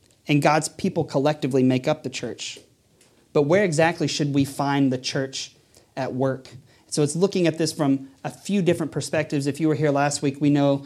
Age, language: 30-49, English